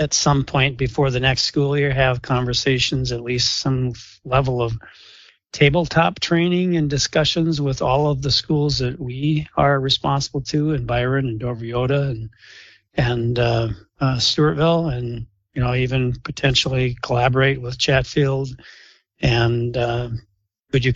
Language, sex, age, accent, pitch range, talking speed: English, male, 40-59, American, 120-145 Hz, 140 wpm